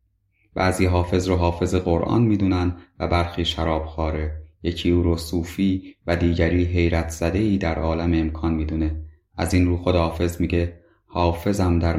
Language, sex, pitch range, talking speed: Persian, male, 80-95 Hz, 155 wpm